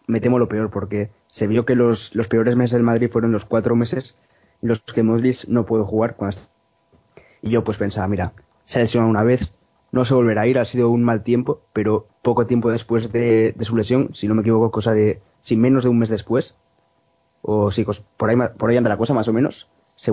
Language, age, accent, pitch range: Spanish, 20-39, Spanish, 110-125 Hz